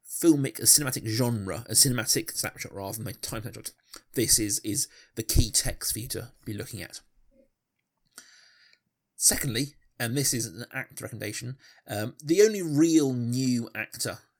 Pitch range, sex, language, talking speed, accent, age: 110-130 Hz, male, English, 155 wpm, British, 30-49